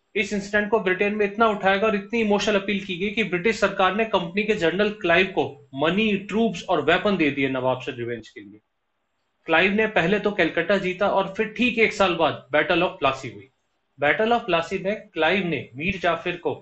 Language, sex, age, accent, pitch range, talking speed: Hindi, male, 30-49, native, 155-205 Hz, 100 wpm